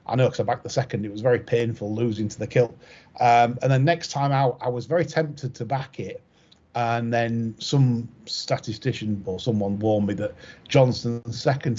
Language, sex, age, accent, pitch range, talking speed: English, male, 40-59, British, 115-135 Hz, 200 wpm